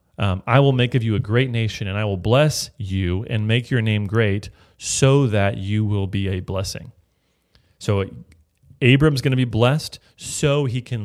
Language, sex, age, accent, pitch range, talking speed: English, male, 30-49, American, 100-125 Hz, 190 wpm